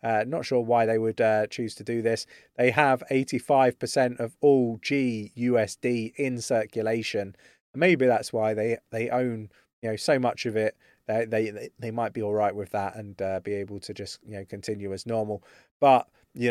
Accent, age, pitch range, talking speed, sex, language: British, 30-49, 110-130 Hz, 195 wpm, male, English